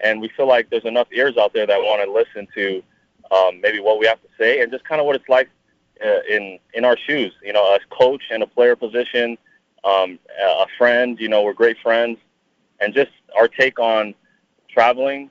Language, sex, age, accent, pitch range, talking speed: English, male, 30-49, American, 100-125 Hz, 215 wpm